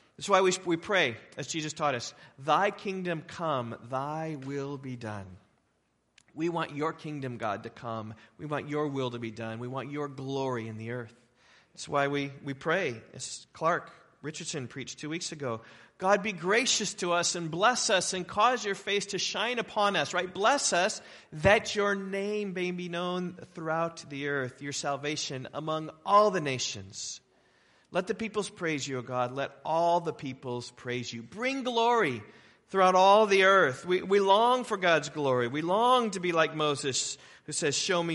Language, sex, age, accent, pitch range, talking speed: English, male, 40-59, American, 125-185 Hz, 185 wpm